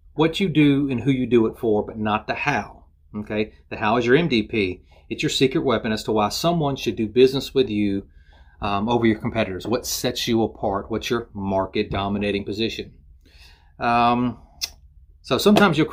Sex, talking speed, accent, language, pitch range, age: male, 185 wpm, American, English, 100-125 Hz, 30-49